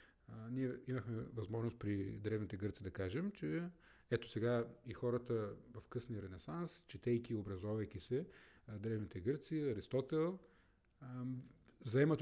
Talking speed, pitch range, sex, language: 120 wpm, 105-130 Hz, male, Bulgarian